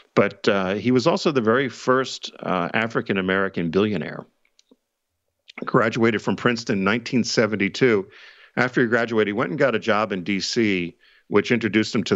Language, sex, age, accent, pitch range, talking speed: English, male, 50-69, American, 90-115 Hz, 150 wpm